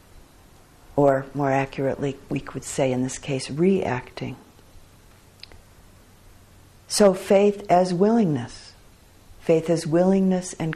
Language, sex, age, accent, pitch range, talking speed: English, female, 50-69, American, 135-170 Hz, 100 wpm